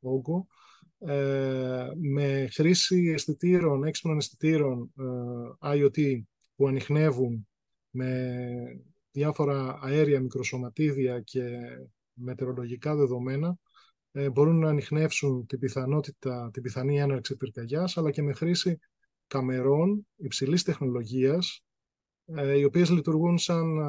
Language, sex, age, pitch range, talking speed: Greek, male, 20-39, 130-165 Hz, 100 wpm